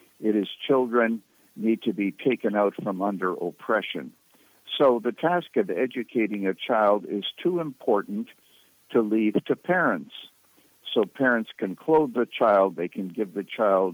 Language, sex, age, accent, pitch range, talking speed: English, male, 60-79, American, 100-125 Hz, 155 wpm